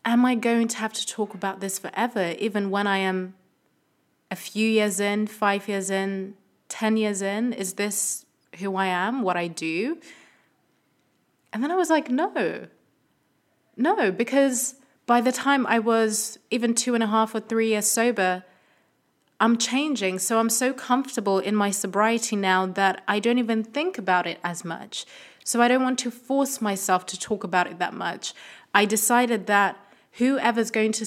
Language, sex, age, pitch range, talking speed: English, female, 20-39, 185-225 Hz, 180 wpm